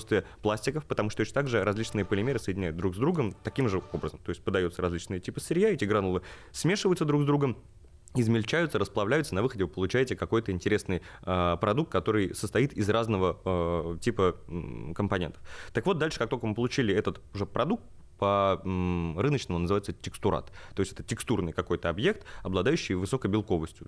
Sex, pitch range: male, 85-110 Hz